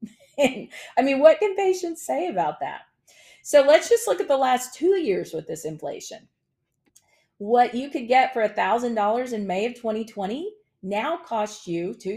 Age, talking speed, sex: 40-59, 175 wpm, female